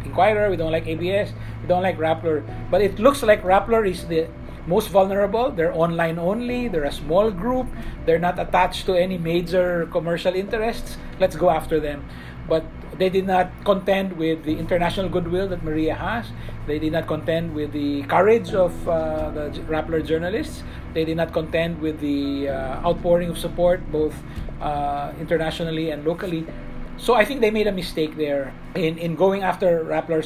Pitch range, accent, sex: 150-185 Hz, Filipino, male